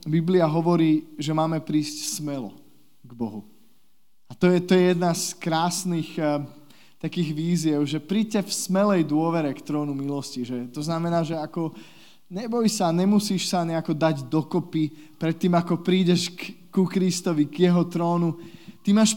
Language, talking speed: Slovak, 160 wpm